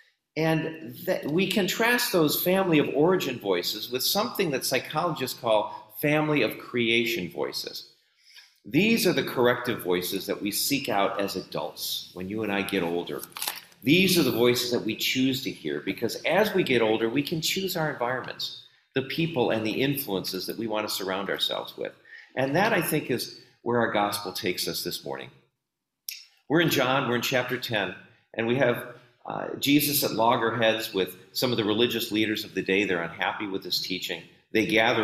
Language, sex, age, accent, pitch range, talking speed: English, male, 40-59, American, 110-155 Hz, 185 wpm